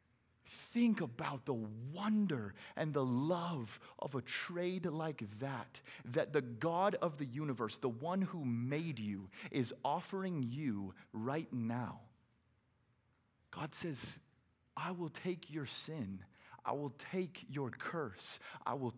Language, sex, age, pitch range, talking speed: English, male, 30-49, 110-140 Hz, 135 wpm